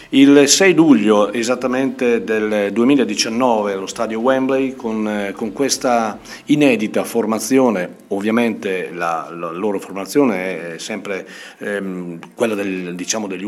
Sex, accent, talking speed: male, native, 120 wpm